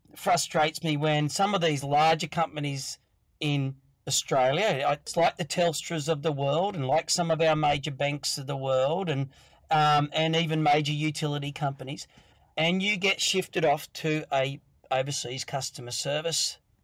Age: 40-59